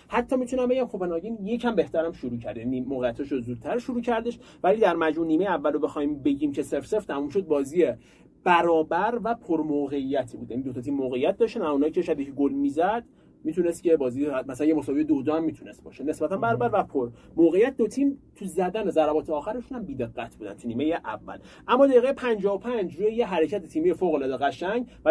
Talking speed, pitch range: 205 wpm, 150-205 Hz